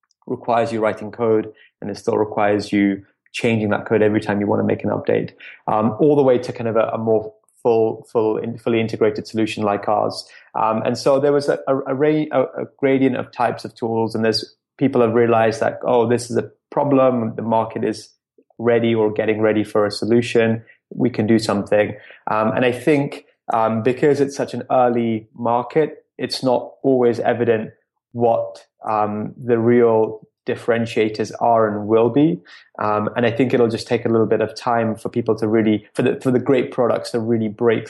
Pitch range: 110-125 Hz